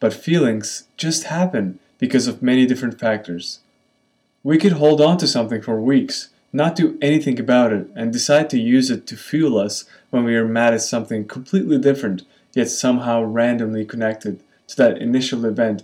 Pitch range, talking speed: 110-140 Hz, 175 wpm